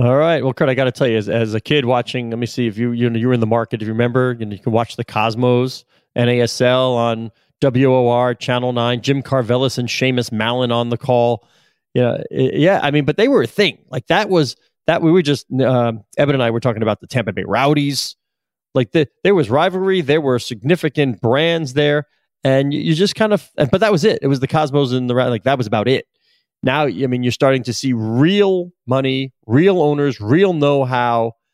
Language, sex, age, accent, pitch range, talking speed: English, male, 30-49, American, 120-145 Hz, 225 wpm